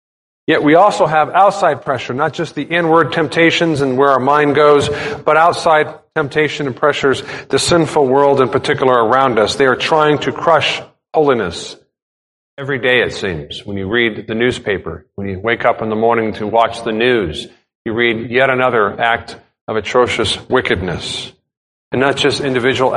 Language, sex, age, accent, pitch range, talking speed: English, male, 40-59, American, 120-150 Hz, 170 wpm